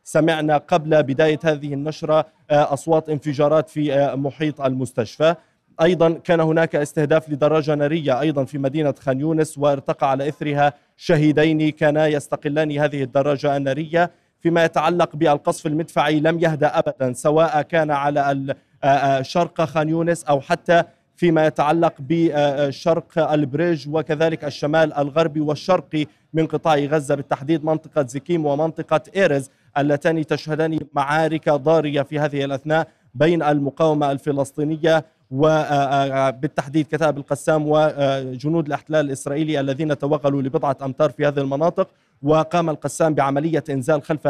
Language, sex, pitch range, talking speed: Arabic, male, 145-160 Hz, 120 wpm